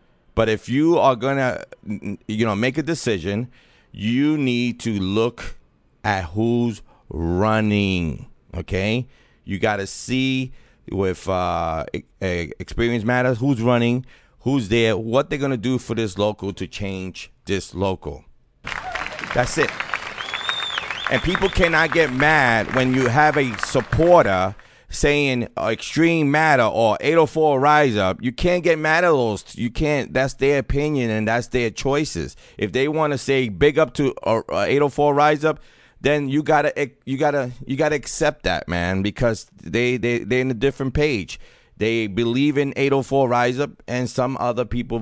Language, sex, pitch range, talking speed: English, male, 100-140 Hz, 165 wpm